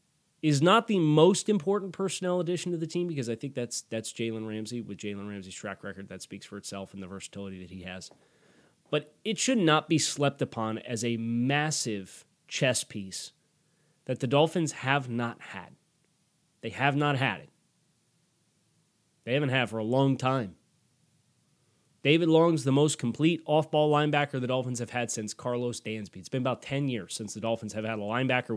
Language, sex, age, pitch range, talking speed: English, male, 30-49, 115-145 Hz, 185 wpm